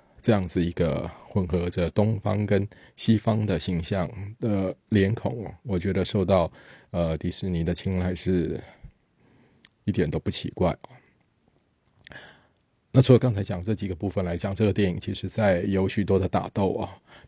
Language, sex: Chinese, male